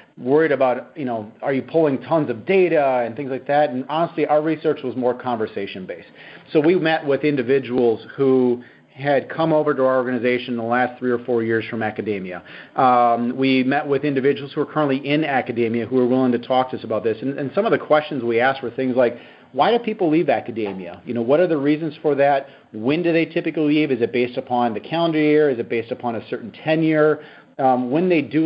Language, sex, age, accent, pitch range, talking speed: English, male, 40-59, American, 125-150 Hz, 230 wpm